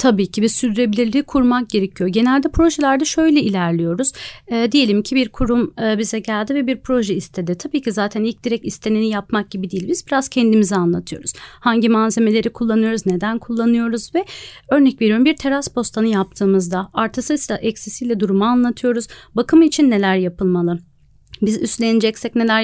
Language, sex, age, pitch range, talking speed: Turkish, female, 40-59, 195-240 Hz, 155 wpm